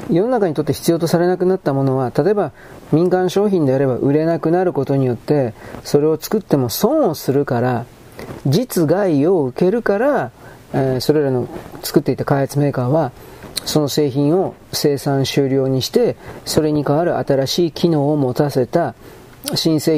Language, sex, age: Japanese, male, 40-59